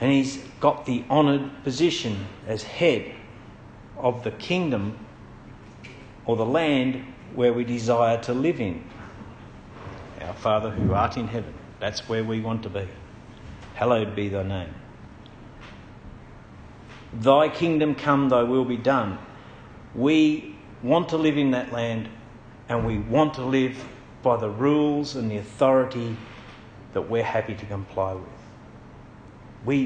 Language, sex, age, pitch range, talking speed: English, male, 50-69, 110-130 Hz, 135 wpm